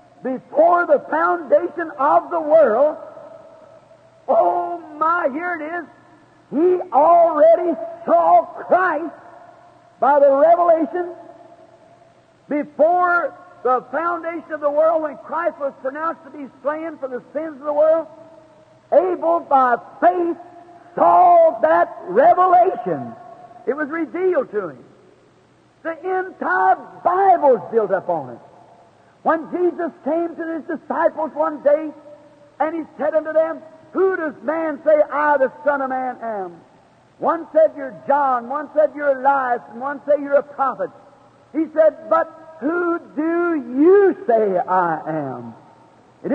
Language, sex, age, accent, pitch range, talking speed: English, male, 50-69, American, 290-340 Hz, 135 wpm